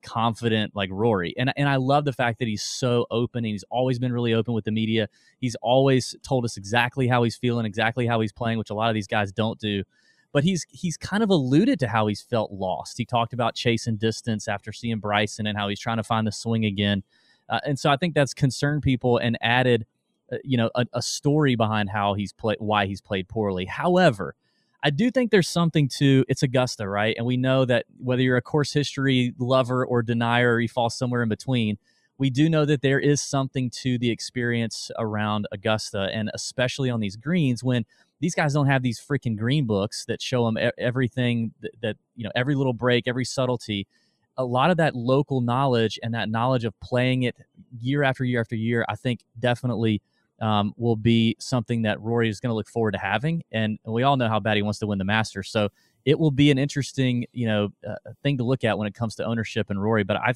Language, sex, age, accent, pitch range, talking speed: English, male, 30-49, American, 110-130 Hz, 225 wpm